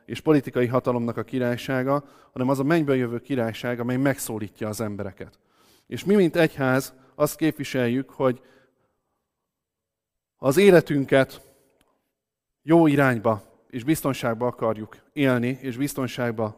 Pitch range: 110-135 Hz